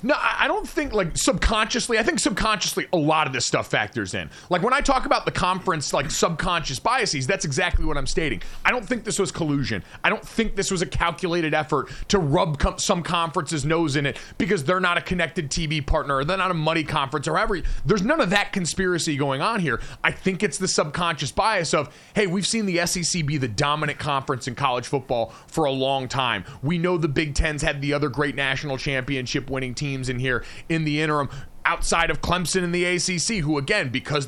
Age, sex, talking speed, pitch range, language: 30-49, male, 220 wpm, 145-195 Hz, English